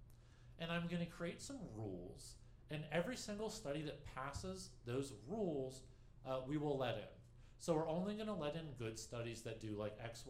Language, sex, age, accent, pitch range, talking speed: English, male, 40-59, American, 120-165 Hz, 190 wpm